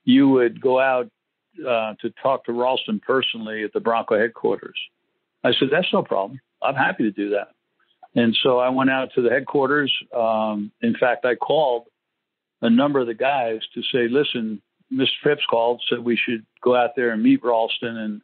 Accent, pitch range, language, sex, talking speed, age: American, 115-135 Hz, English, male, 190 wpm, 60-79